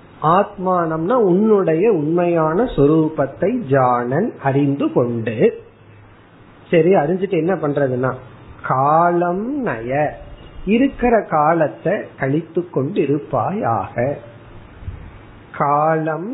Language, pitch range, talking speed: Tamil, 140-180 Hz, 50 wpm